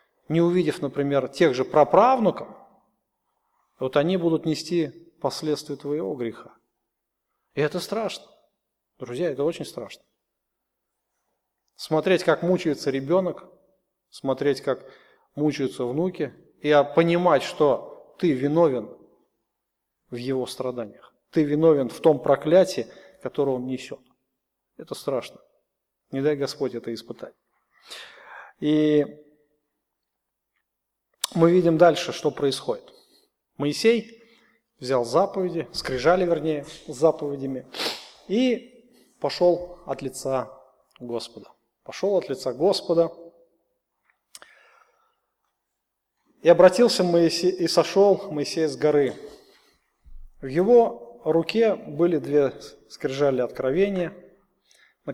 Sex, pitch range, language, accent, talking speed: male, 140-180 Hz, Russian, native, 95 wpm